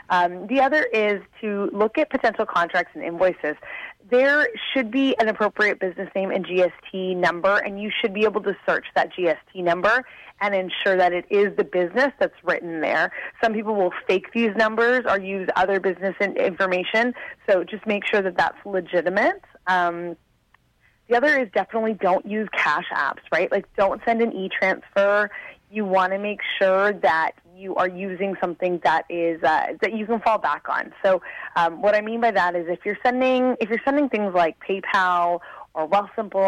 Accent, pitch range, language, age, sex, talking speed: American, 180-225 Hz, English, 30-49, female, 185 wpm